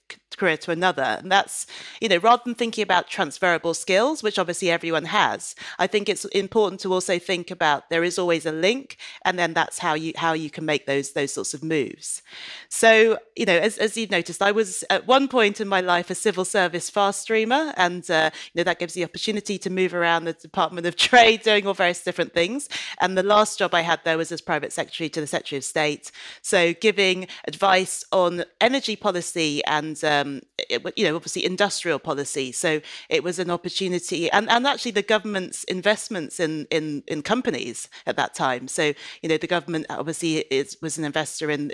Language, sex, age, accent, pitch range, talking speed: English, female, 30-49, British, 160-205 Hz, 205 wpm